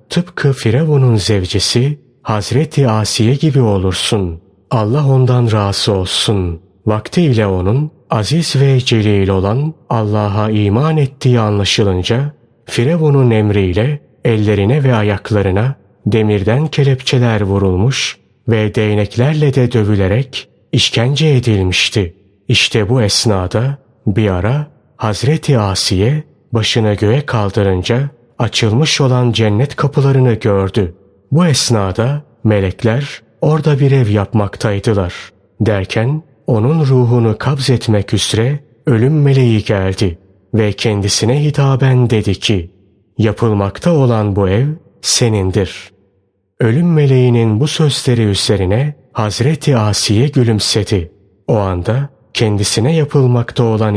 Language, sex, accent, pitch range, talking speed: Turkish, male, native, 100-135 Hz, 100 wpm